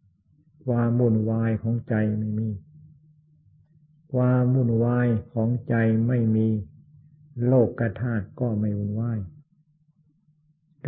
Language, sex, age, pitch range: Thai, male, 60-79, 105-130 Hz